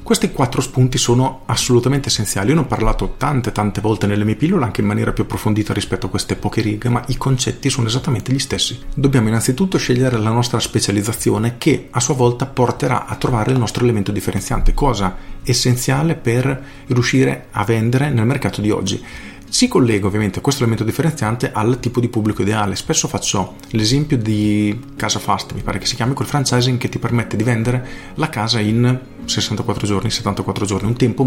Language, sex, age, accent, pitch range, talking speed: Italian, male, 40-59, native, 105-130 Hz, 190 wpm